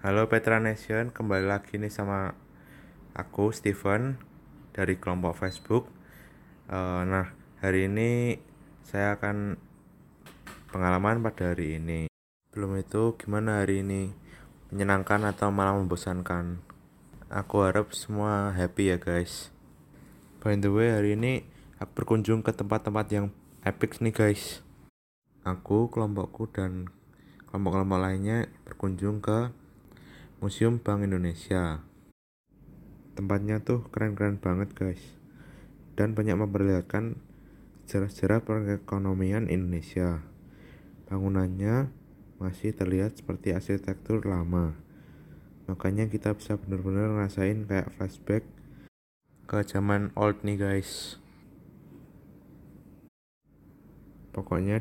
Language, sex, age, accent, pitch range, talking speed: Indonesian, male, 20-39, native, 95-105 Hz, 100 wpm